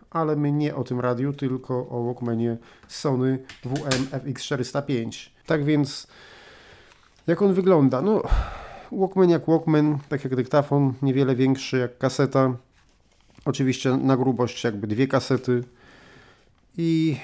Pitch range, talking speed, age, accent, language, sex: 125-140 Hz, 115 wpm, 30-49, native, Polish, male